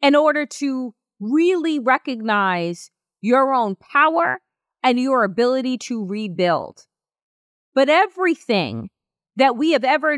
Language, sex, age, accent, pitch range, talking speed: English, female, 30-49, American, 235-310 Hz, 110 wpm